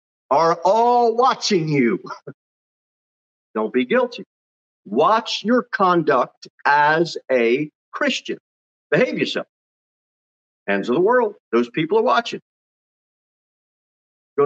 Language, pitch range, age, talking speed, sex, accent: English, 135-225 Hz, 40-59, 100 wpm, male, American